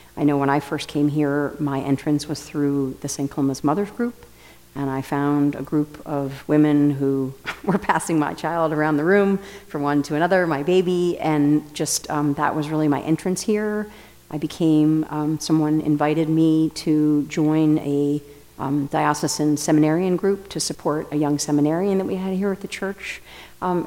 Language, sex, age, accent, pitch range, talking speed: English, female, 50-69, American, 150-175 Hz, 180 wpm